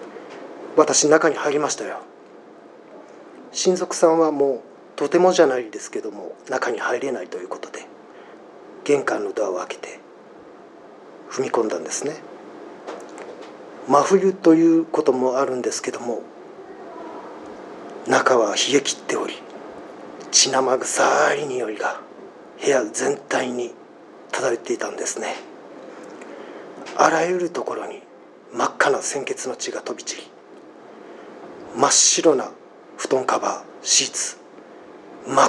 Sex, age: male, 40-59